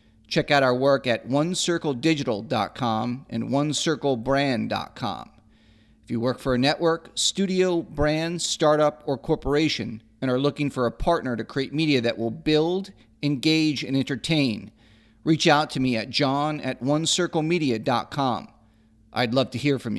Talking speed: 140 wpm